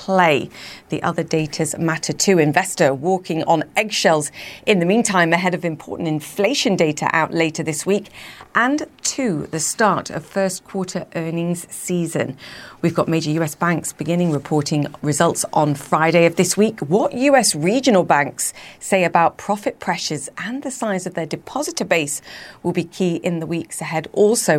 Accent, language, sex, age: British, English, female, 40-59